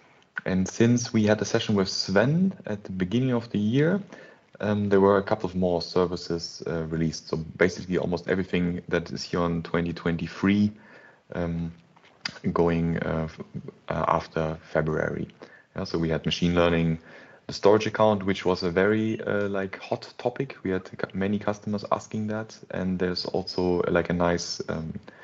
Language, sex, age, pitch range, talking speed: English, male, 30-49, 85-105 Hz, 160 wpm